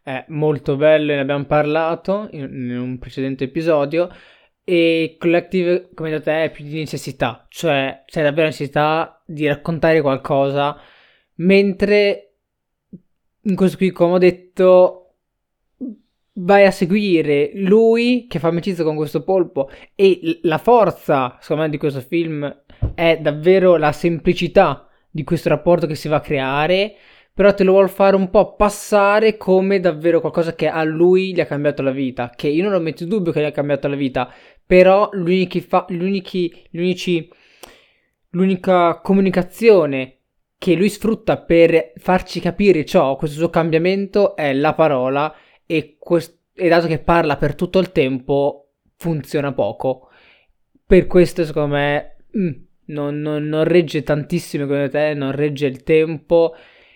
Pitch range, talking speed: 150-185 Hz, 145 wpm